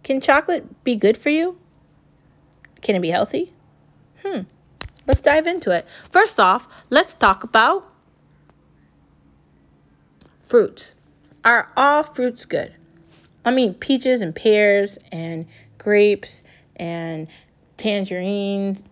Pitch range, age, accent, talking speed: 175-210 Hz, 20-39, American, 110 wpm